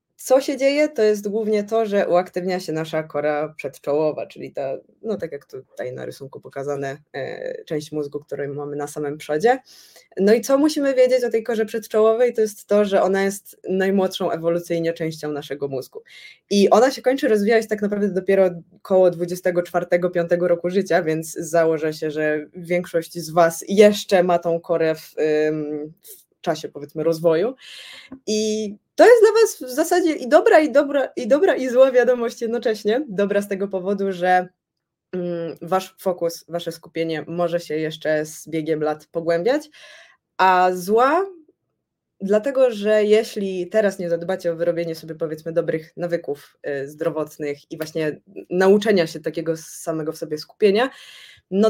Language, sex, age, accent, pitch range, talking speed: Polish, female, 20-39, native, 160-215 Hz, 160 wpm